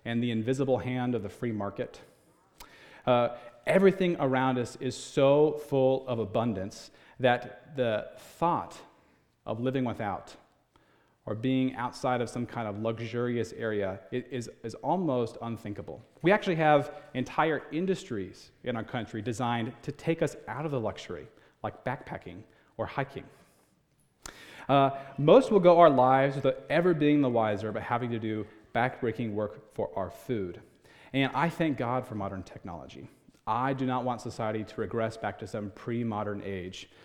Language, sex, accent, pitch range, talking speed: English, male, American, 110-135 Hz, 155 wpm